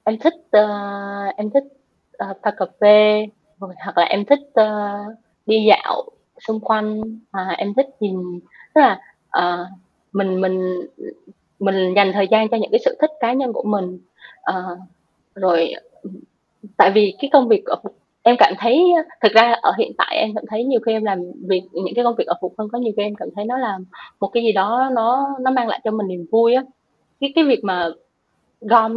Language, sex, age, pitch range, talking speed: Vietnamese, female, 20-39, 200-240 Hz, 200 wpm